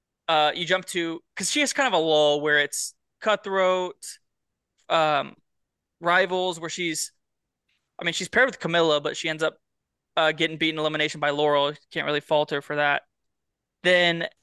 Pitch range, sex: 155-185 Hz, male